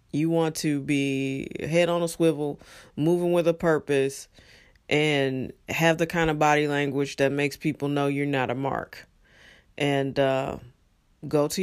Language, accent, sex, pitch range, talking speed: English, American, female, 135-165 Hz, 160 wpm